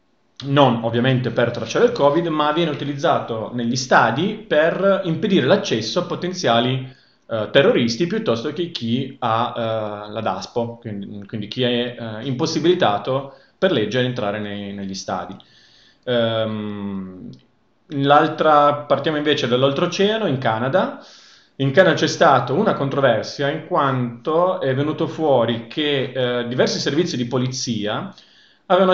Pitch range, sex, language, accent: 120-155 Hz, male, Italian, native